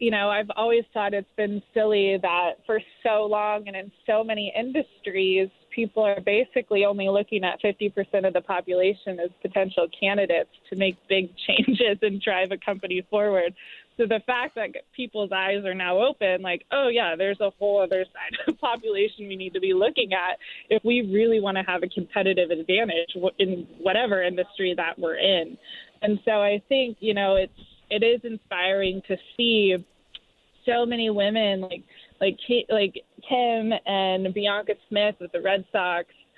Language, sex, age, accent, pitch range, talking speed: English, female, 20-39, American, 190-220 Hz, 175 wpm